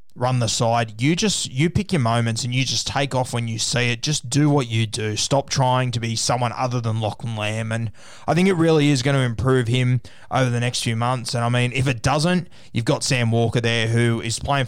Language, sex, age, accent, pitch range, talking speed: English, male, 20-39, Australian, 115-135 Hz, 250 wpm